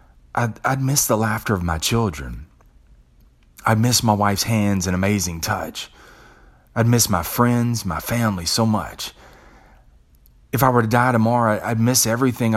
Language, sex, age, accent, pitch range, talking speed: English, male, 30-49, American, 70-120 Hz, 160 wpm